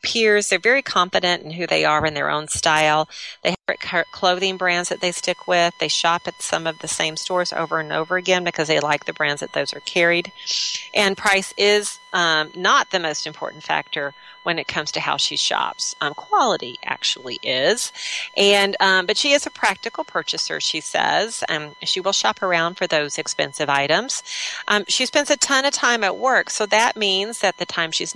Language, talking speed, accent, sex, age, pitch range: English, 205 wpm, American, female, 40-59, 160-210 Hz